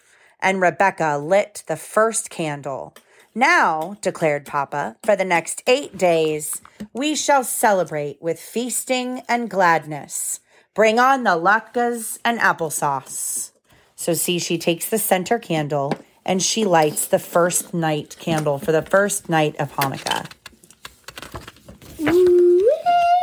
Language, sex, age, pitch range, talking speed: English, female, 30-49, 160-250 Hz, 120 wpm